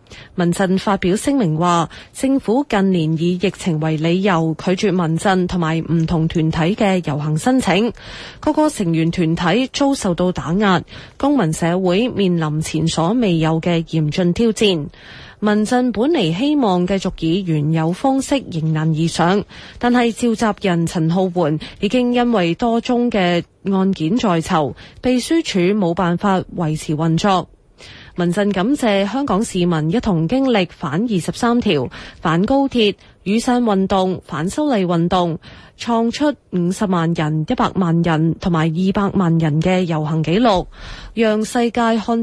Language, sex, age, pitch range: Chinese, female, 20-39, 165-225 Hz